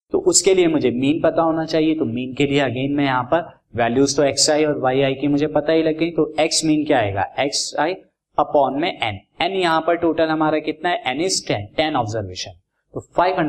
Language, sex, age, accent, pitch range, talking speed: Hindi, male, 20-39, native, 125-155 Hz, 160 wpm